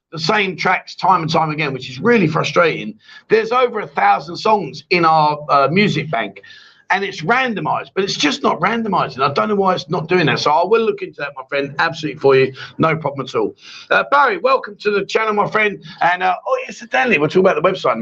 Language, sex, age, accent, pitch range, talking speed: English, male, 50-69, British, 150-205 Hz, 235 wpm